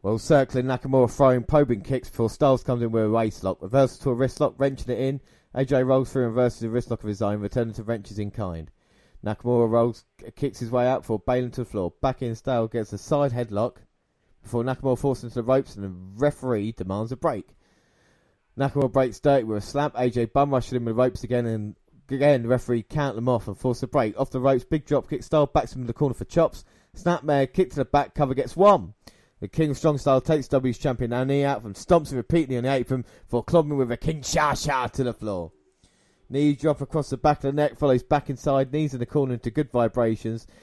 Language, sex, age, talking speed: English, male, 20-39, 235 wpm